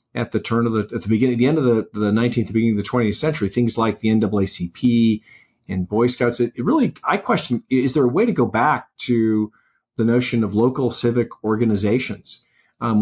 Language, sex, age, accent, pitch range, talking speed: English, male, 40-59, American, 110-130 Hz, 210 wpm